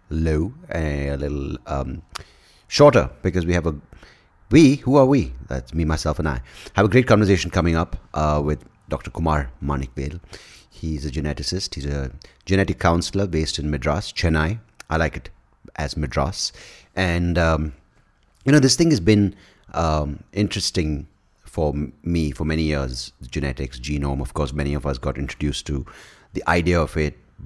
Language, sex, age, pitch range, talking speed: English, male, 30-49, 70-90 Hz, 165 wpm